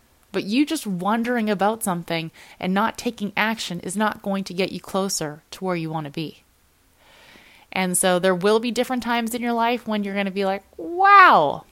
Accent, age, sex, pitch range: American, 20-39, female, 170-230 Hz